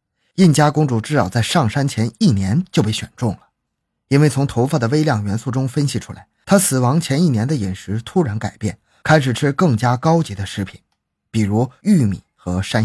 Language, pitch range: Chinese, 110-155 Hz